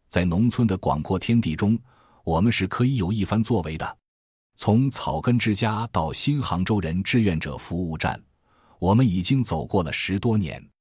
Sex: male